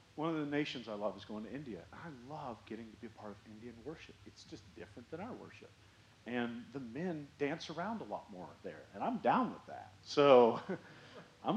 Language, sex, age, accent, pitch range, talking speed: English, male, 40-59, American, 105-170 Hz, 220 wpm